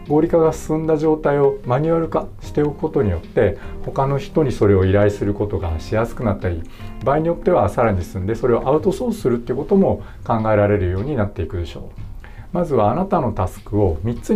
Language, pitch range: Japanese, 95-135 Hz